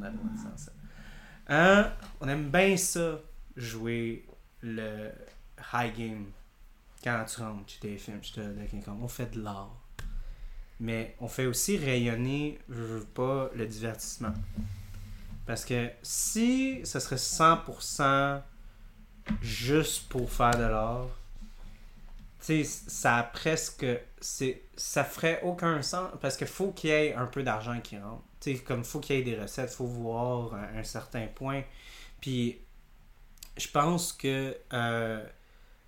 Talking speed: 140 wpm